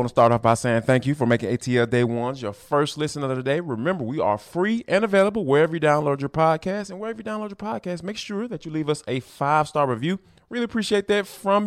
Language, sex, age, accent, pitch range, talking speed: English, male, 20-39, American, 125-180 Hz, 250 wpm